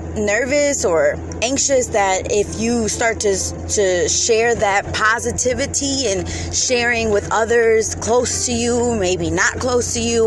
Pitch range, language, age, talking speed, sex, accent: 170-235 Hz, English, 20-39, 140 wpm, female, American